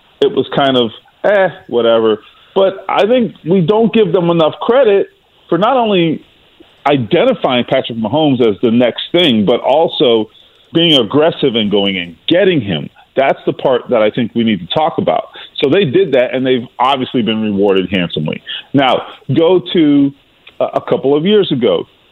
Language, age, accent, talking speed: English, 40-59, American, 175 wpm